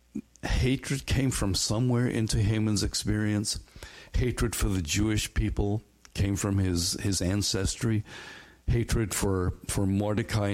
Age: 60-79